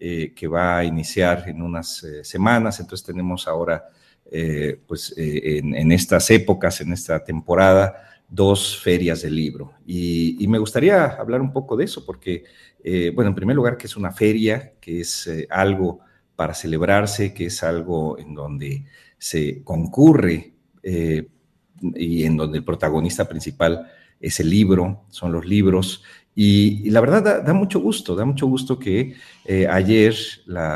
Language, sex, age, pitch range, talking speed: Spanish, male, 40-59, 80-100 Hz, 170 wpm